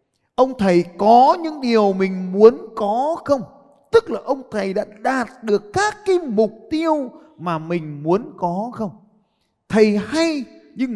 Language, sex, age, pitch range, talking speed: Vietnamese, male, 20-39, 140-220 Hz, 155 wpm